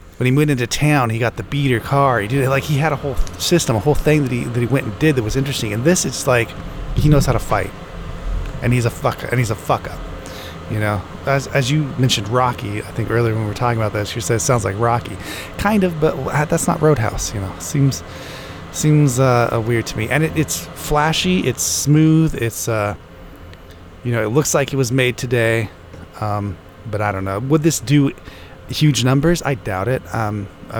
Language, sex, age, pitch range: English, male, 30-49, 105-140 Hz